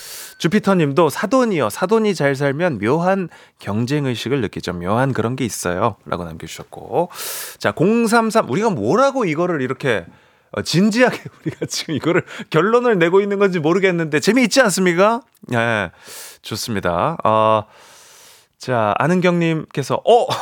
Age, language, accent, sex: 30-49, Korean, native, male